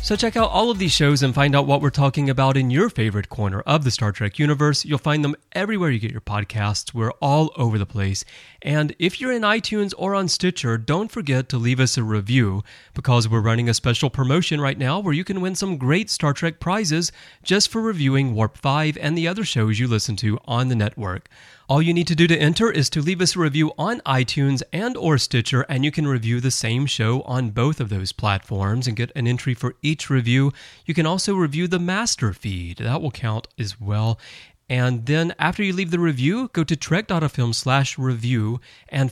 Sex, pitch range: male, 115-165 Hz